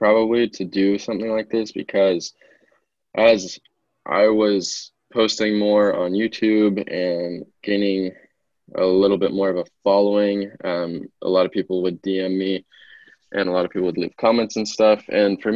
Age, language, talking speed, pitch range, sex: 20-39, English, 165 wpm, 90-105 Hz, male